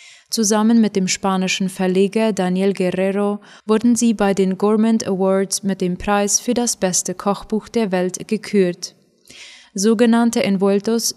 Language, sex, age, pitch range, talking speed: German, female, 20-39, 190-220 Hz, 135 wpm